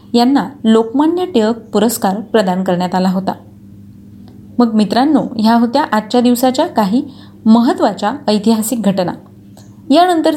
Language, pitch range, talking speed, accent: Marathi, 195-270 Hz, 110 wpm, native